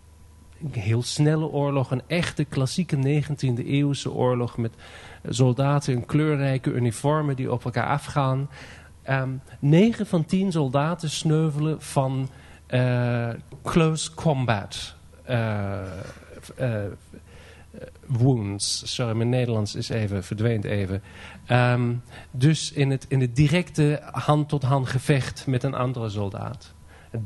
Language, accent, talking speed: Dutch, Dutch, 120 wpm